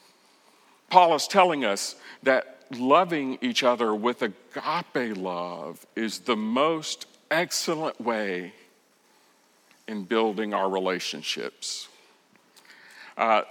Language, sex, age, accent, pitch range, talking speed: English, male, 50-69, American, 110-160 Hz, 95 wpm